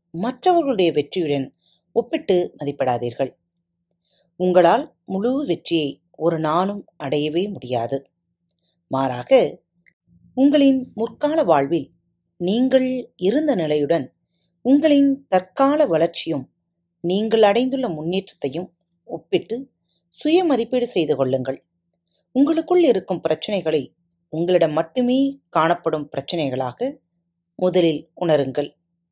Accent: native